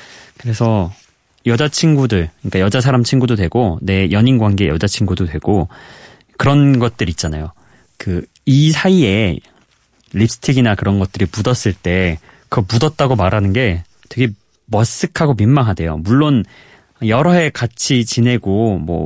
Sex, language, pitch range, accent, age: male, Korean, 95-140 Hz, native, 30-49